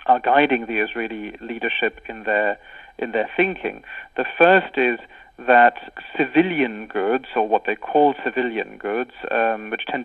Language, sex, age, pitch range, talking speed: English, male, 40-59, 115-140 Hz, 150 wpm